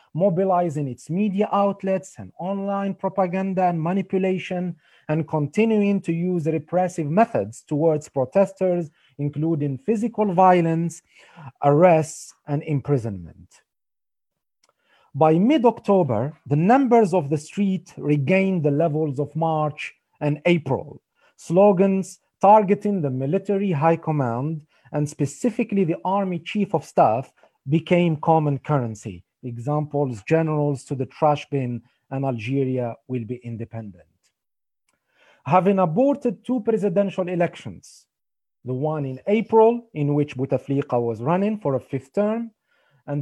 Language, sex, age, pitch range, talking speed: English, male, 40-59, 140-195 Hz, 115 wpm